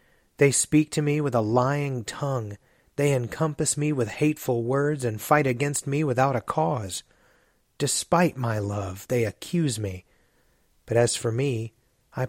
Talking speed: 155 wpm